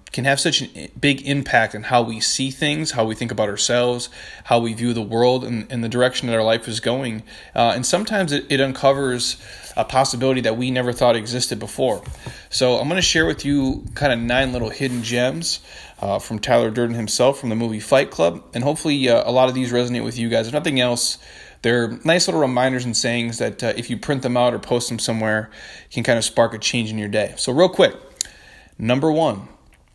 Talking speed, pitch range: 225 wpm, 115-135 Hz